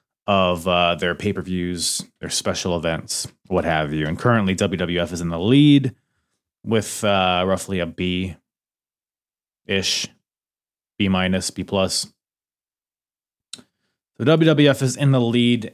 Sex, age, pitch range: male, 30-49, 100-140 Hz